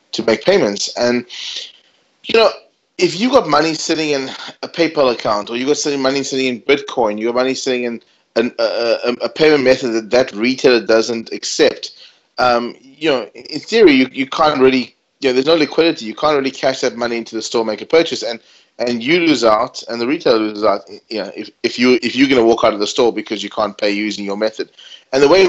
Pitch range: 115-145 Hz